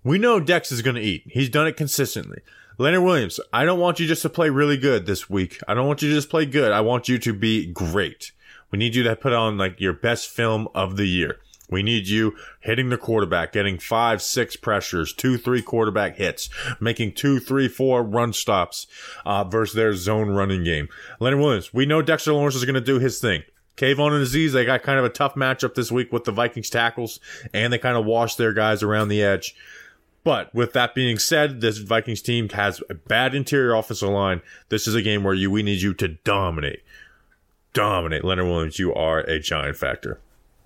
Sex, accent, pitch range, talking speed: male, American, 105-135 Hz, 215 wpm